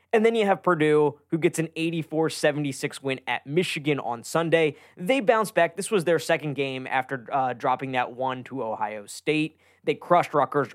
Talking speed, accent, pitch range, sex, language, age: 185 wpm, American, 125-160 Hz, male, English, 20-39